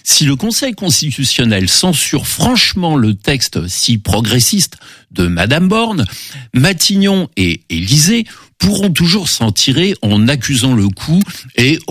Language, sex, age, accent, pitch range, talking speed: French, male, 60-79, French, 110-160 Hz, 125 wpm